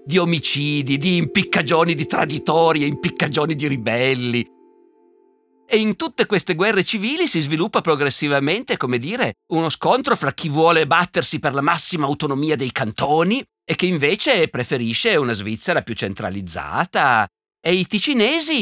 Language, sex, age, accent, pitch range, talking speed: Italian, male, 50-69, native, 120-170 Hz, 140 wpm